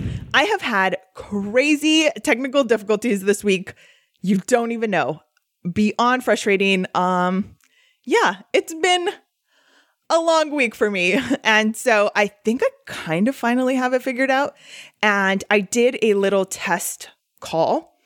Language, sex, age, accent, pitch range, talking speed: English, female, 20-39, American, 185-265 Hz, 140 wpm